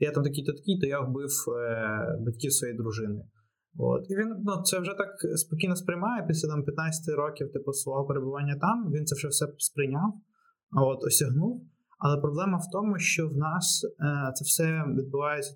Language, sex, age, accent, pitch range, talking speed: Ukrainian, male, 20-39, native, 130-155 Hz, 180 wpm